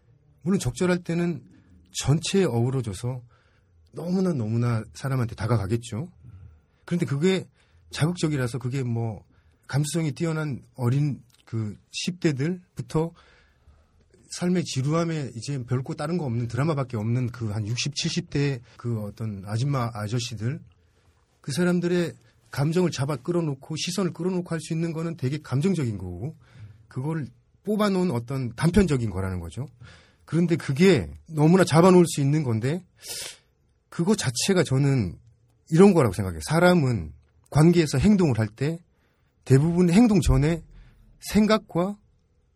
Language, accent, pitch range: Korean, native, 115-165 Hz